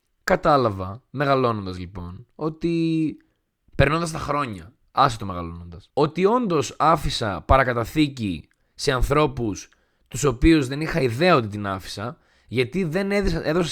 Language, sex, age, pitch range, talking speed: Greek, male, 20-39, 115-175 Hz, 120 wpm